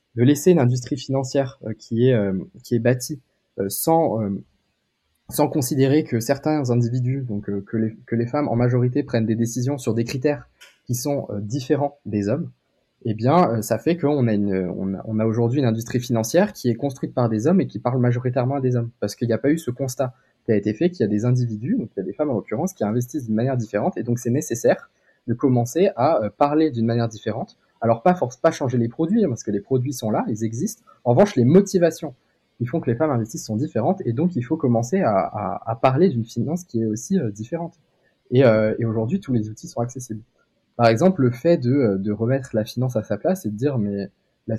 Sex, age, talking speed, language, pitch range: male, 20-39, 245 wpm, French, 110-140 Hz